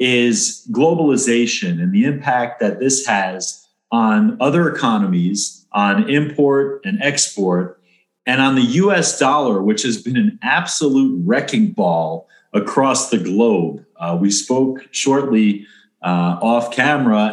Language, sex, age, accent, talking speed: English, male, 40-59, American, 130 wpm